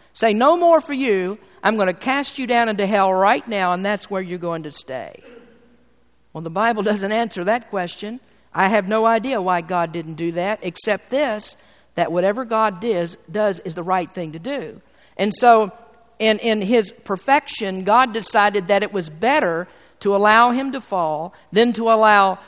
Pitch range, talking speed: 180-230 Hz, 190 wpm